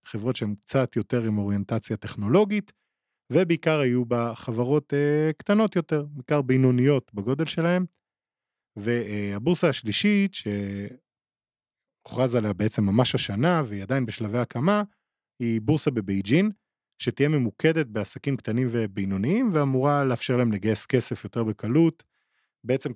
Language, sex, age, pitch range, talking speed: Hebrew, male, 20-39, 105-155 Hz, 120 wpm